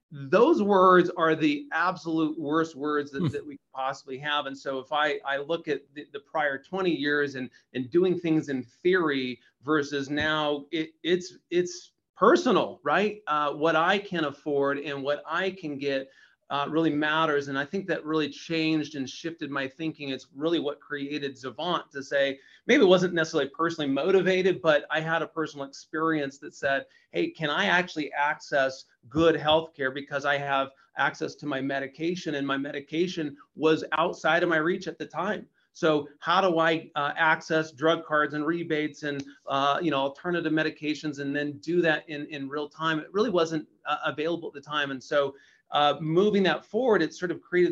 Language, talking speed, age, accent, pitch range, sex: English, 185 wpm, 40-59, American, 145-170 Hz, male